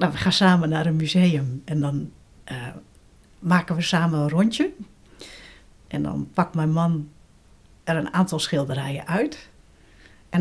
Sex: female